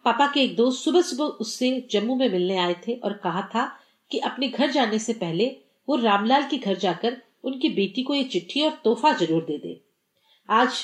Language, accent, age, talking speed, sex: Hindi, native, 40-59, 205 wpm, female